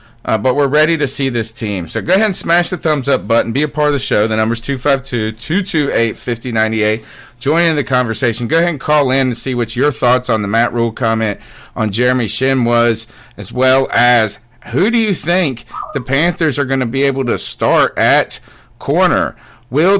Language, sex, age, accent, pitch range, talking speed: English, male, 40-59, American, 115-145 Hz, 205 wpm